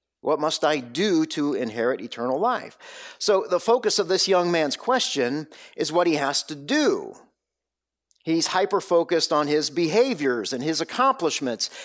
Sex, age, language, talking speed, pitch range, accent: male, 50-69, English, 150 wpm, 145-205 Hz, American